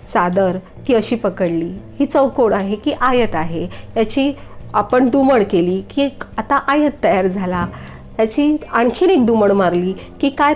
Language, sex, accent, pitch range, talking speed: Marathi, female, native, 190-275 Hz, 155 wpm